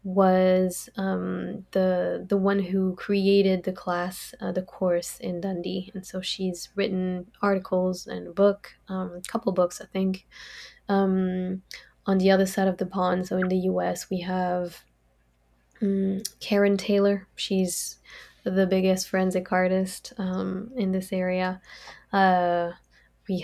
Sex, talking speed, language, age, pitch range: female, 145 wpm, English, 20-39, 185-195 Hz